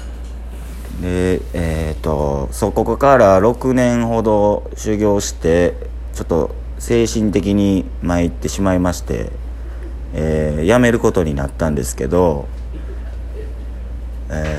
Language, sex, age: Japanese, male, 40-59